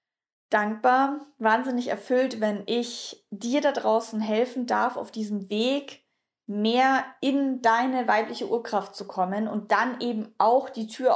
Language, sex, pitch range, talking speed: German, female, 195-230 Hz, 140 wpm